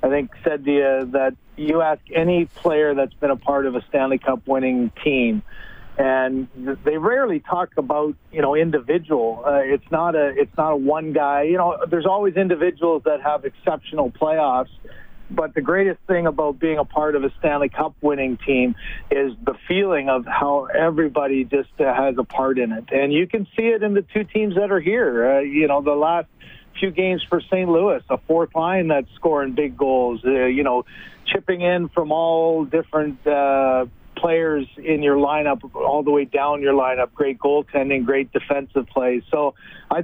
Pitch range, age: 135-165 Hz, 50-69